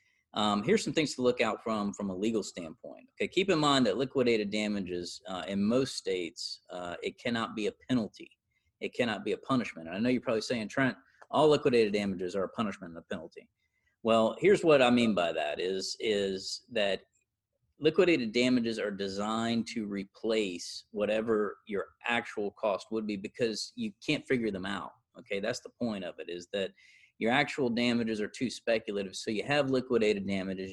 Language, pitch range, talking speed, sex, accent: English, 100-130 Hz, 200 wpm, male, American